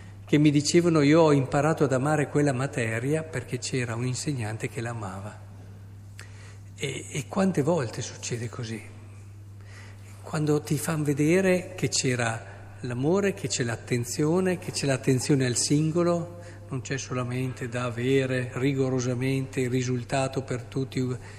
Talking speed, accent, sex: 130 wpm, native, male